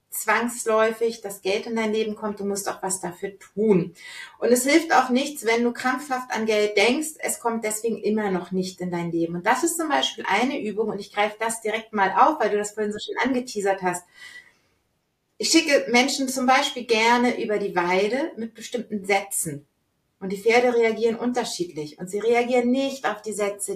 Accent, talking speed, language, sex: German, 200 wpm, German, female